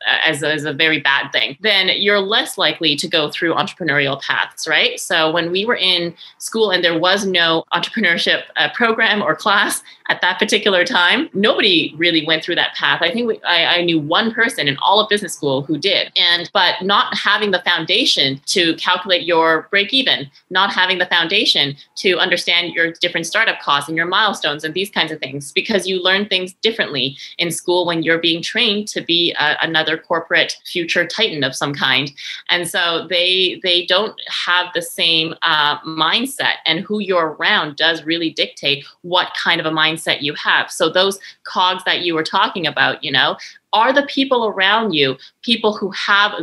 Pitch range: 160-200 Hz